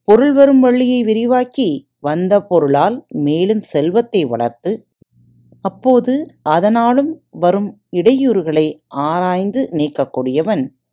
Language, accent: Tamil, native